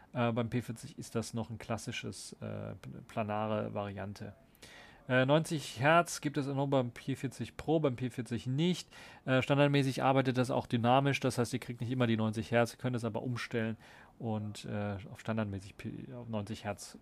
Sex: male